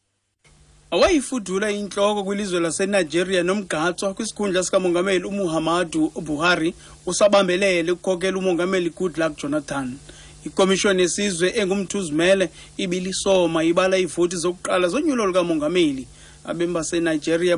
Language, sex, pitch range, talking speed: English, male, 165-195 Hz, 105 wpm